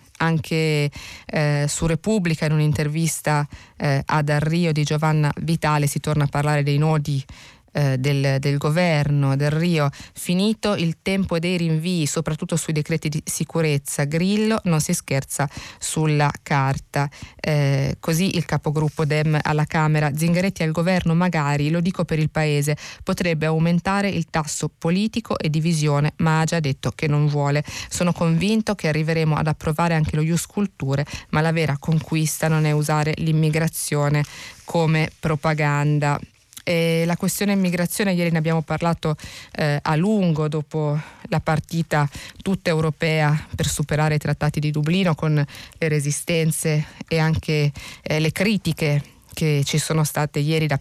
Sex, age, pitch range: female, 20-39, 150-165 Hz